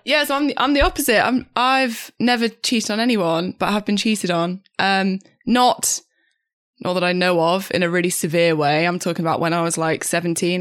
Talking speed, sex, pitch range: 225 wpm, female, 165-200 Hz